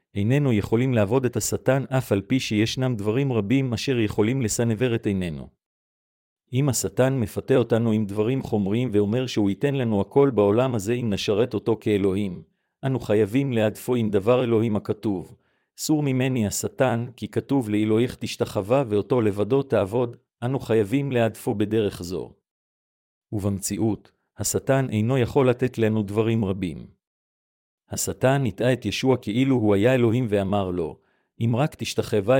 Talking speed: 145 wpm